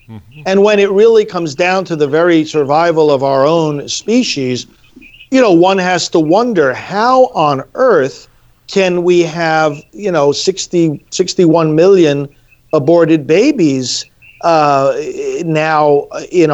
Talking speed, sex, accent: 135 wpm, male, American